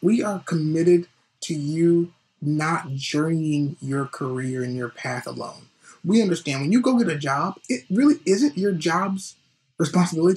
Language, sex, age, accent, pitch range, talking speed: English, male, 30-49, American, 150-195 Hz, 155 wpm